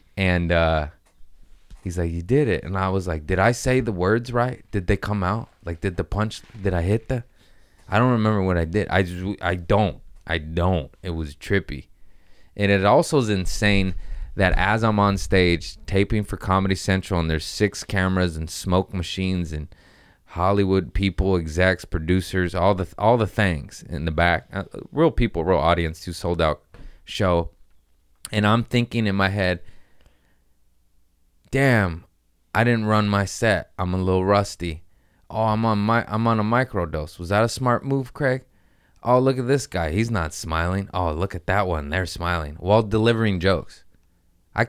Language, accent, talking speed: English, American, 185 wpm